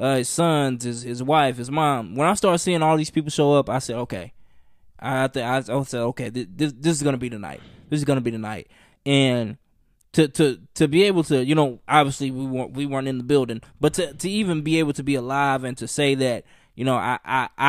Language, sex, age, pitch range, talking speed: English, male, 20-39, 125-155 Hz, 235 wpm